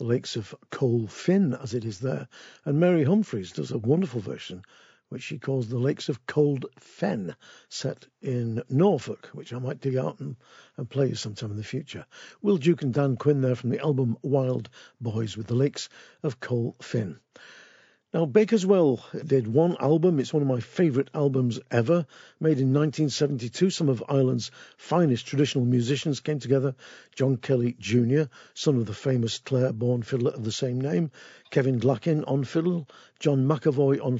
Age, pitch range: 50-69, 125-155 Hz